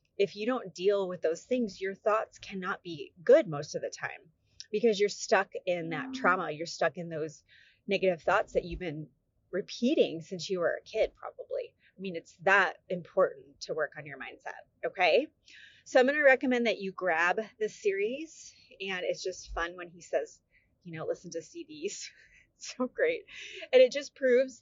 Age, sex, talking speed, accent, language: 30-49, female, 190 wpm, American, English